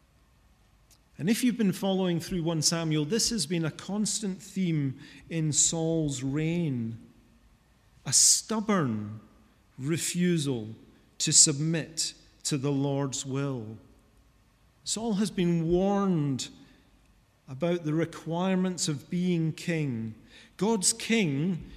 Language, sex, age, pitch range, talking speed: English, male, 40-59, 150-185 Hz, 105 wpm